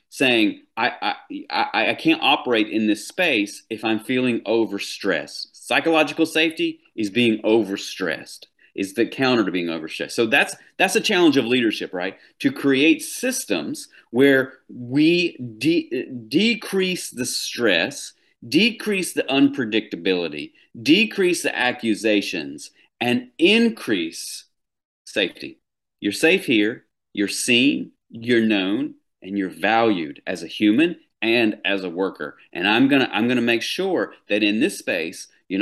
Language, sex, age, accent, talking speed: English, male, 40-59, American, 135 wpm